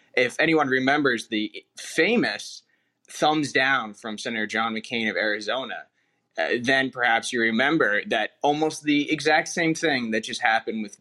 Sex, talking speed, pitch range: male, 155 wpm, 115-145 Hz